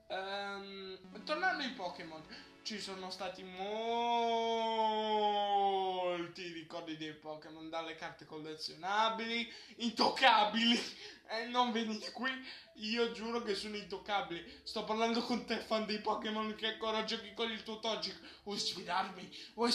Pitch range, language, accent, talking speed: 175-240 Hz, Italian, native, 130 wpm